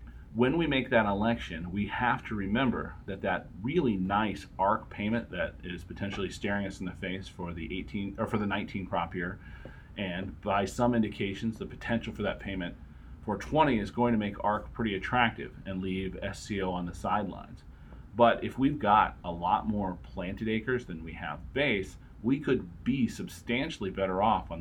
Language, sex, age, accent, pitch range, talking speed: English, male, 40-59, American, 90-115 Hz, 185 wpm